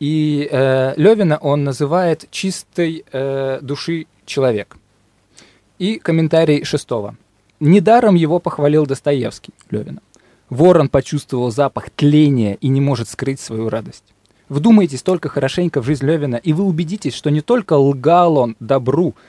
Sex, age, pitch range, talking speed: male, 20-39, 125-160 Hz, 130 wpm